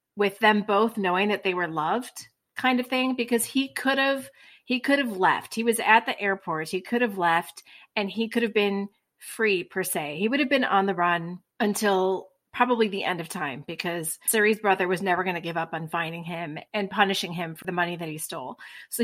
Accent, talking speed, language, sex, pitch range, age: American, 220 wpm, English, female, 180-230 Hz, 30-49